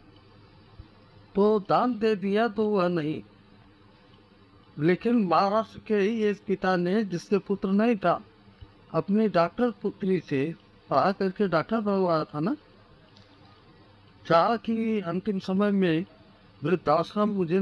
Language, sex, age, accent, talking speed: Hindi, male, 50-69, native, 115 wpm